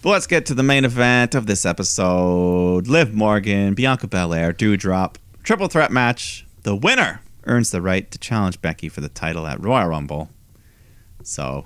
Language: English